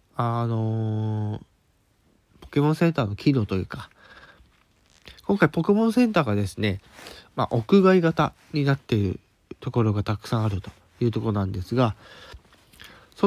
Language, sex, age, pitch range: Japanese, male, 20-39, 100-140 Hz